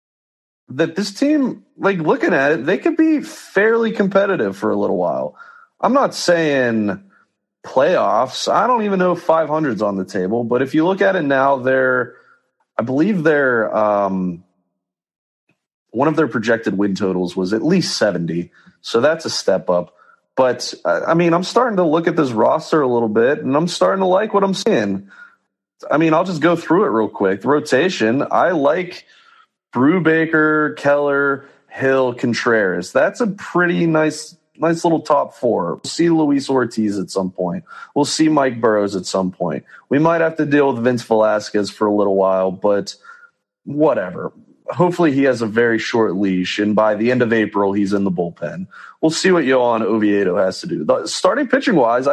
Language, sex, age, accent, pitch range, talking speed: English, male, 30-49, American, 110-175 Hz, 180 wpm